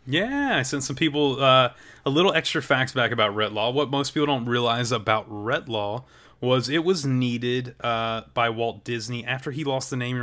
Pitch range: 110-140 Hz